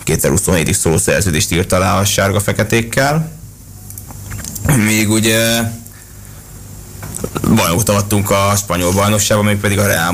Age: 20-39